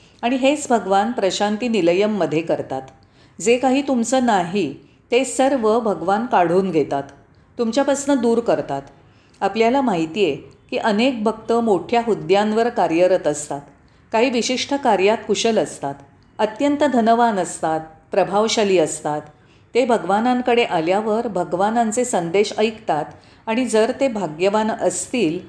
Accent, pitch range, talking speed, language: native, 180-245 Hz, 95 wpm, Marathi